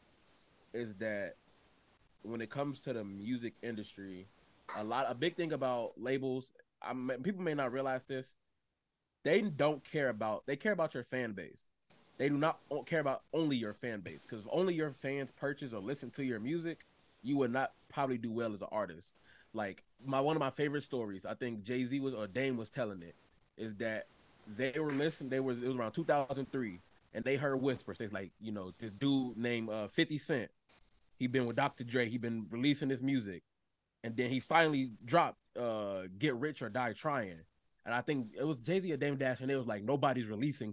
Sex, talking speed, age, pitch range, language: male, 205 wpm, 20-39, 115-140 Hz, English